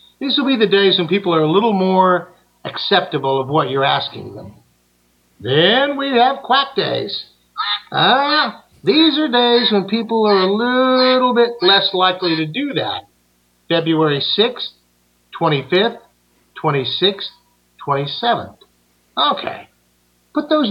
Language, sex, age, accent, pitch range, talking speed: English, male, 50-69, American, 135-200 Hz, 130 wpm